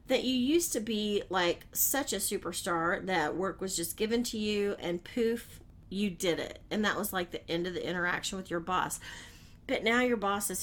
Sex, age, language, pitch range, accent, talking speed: female, 40-59, English, 180-250 Hz, American, 215 wpm